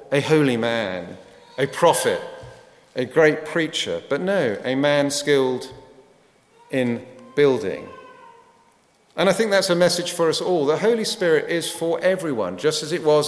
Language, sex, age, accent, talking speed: English, male, 40-59, British, 155 wpm